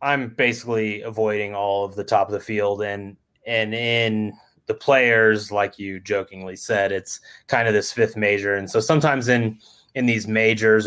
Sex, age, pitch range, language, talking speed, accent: male, 20-39, 100-120 Hz, English, 175 wpm, American